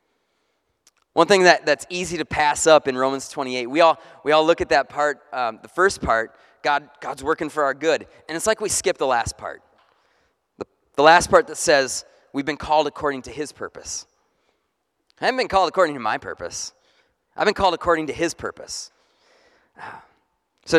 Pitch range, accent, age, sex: 155-215 Hz, American, 30-49, male